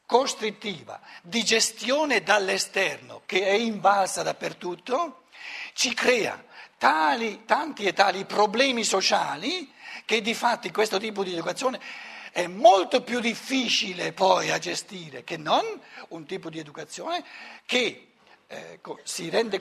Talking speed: 120 wpm